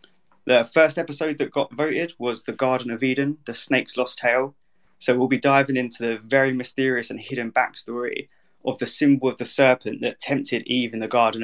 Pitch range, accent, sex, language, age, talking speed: 120-140 Hz, British, male, English, 20-39, 200 wpm